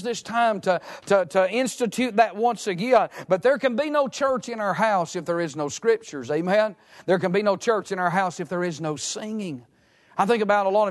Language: English